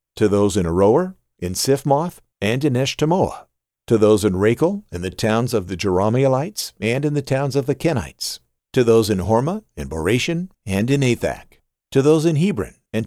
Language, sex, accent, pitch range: English, male, American, 95-125 Hz